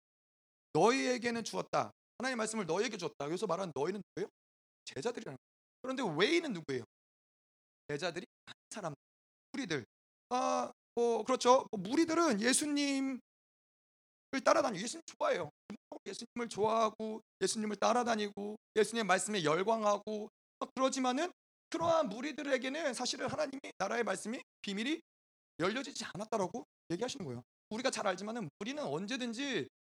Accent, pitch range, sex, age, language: native, 200-255 Hz, male, 30-49, Korean